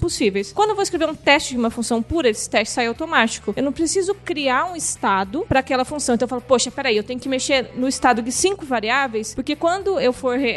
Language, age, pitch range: Portuguese, 20-39, 230-290 Hz